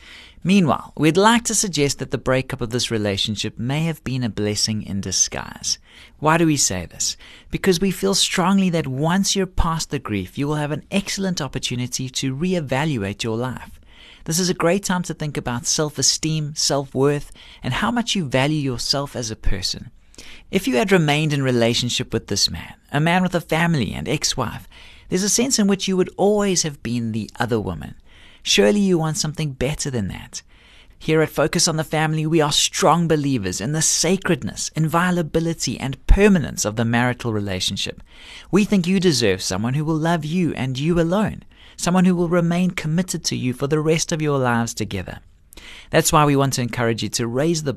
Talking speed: 195 wpm